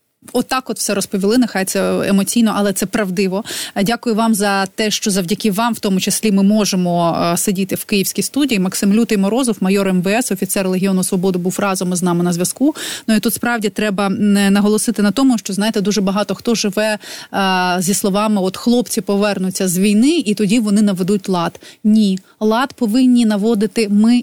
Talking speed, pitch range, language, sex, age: 180 wpm, 190-225 Hz, Ukrainian, female, 30-49